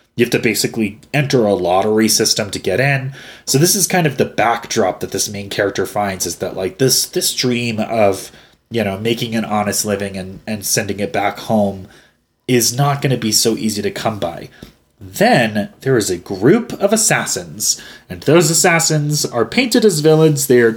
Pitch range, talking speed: 110-150 Hz, 195 wpm